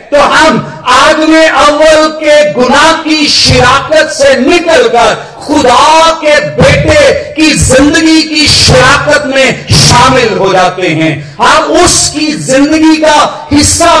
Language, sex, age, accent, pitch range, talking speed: Hindi, male, 50-69, native, 270-315 Hz, 125 wpm